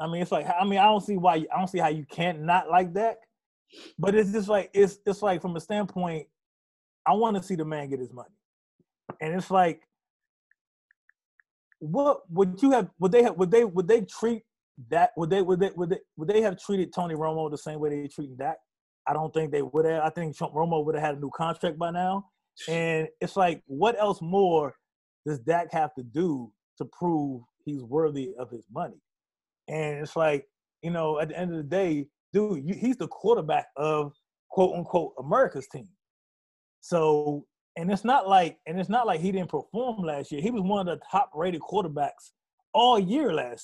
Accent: American